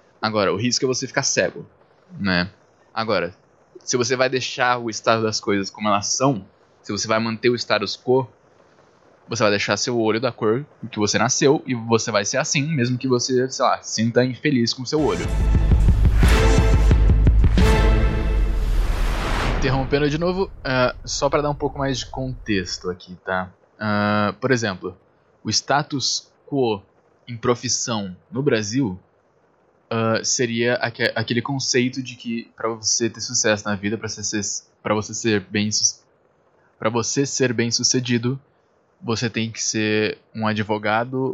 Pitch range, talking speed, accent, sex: 105-125 Hz, 150 wpm, Brazilian, male